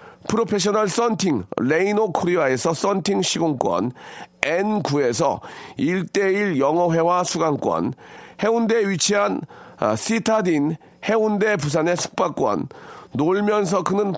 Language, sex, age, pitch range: Korean, male, 40-59, 170-220 Hz